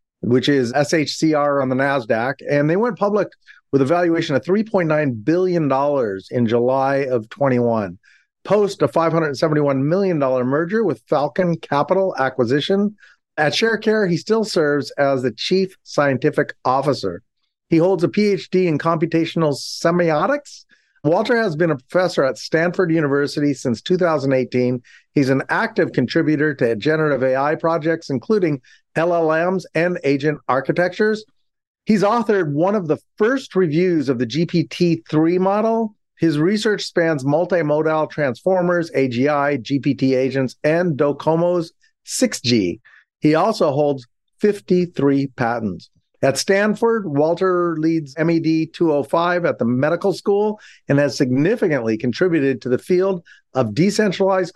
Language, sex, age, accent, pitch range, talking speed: English, male, 40-59, American, 140-185 Hz, 125 wpm